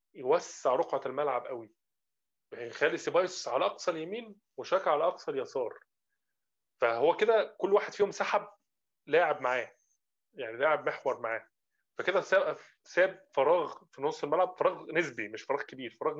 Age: 20-39